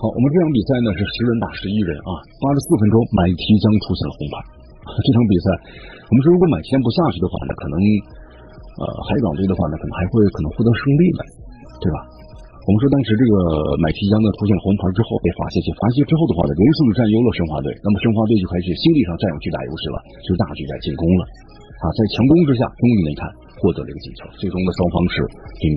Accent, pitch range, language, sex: native, 85-115 Hz, Chinese, male